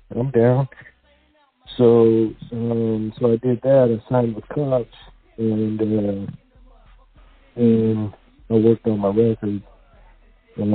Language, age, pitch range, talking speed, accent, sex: English, 50-69, 100-115 Hz, 115 wpm, American, male